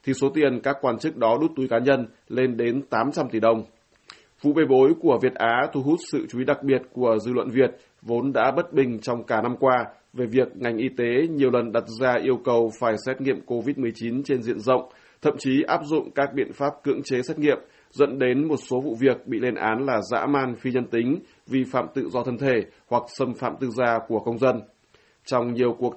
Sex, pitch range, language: male, 120-140 Hz, Vietnamese